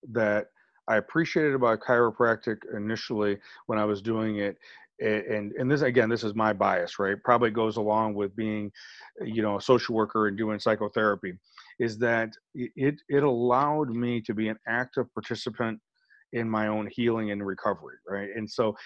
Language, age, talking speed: English, 40-59, 170 wpm